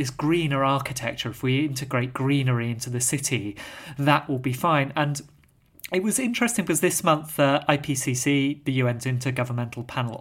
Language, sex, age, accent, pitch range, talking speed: English, male, 30-49, British, 125-150 Hz, 160 wpm